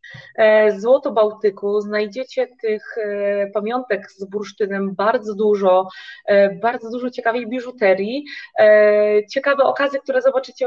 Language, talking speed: Polish, 100 wpm